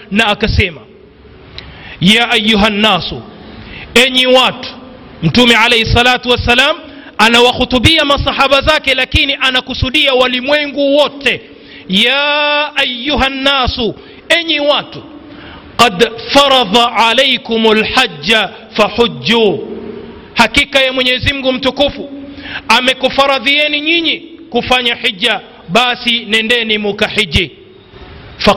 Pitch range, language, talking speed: 225-280 Hz, Swahili, 90 wpm